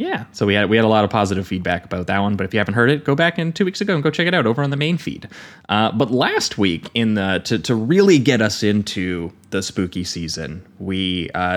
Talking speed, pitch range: 275 wpm, 90-110 Hz